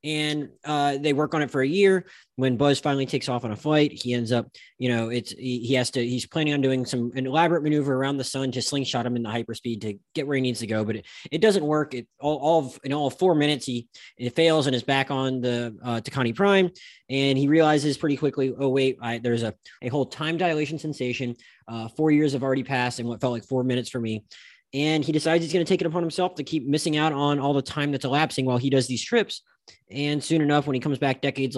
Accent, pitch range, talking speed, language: American, 120-150 Hz, 260 wpm, English